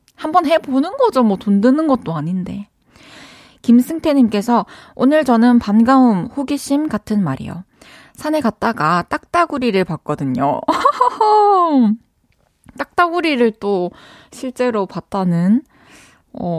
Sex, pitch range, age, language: female, 175-250 Hz, 20-39, Korean